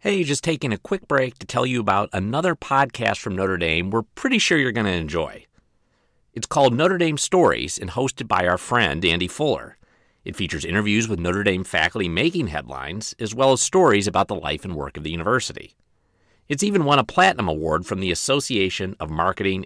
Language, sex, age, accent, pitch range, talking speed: English, male, 50-69, American, 80-120 Hz, 200 wpm